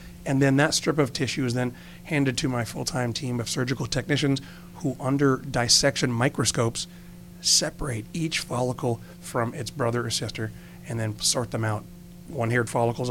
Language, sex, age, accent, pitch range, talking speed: English, male, 40-59, American, 115-140 Hz, 160 wpm